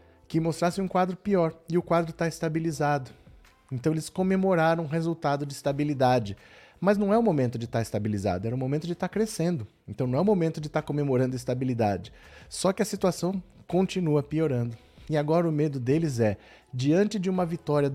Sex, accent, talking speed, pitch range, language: male, Brazilian, 200 wpm, 125-165 Hz, Portuguese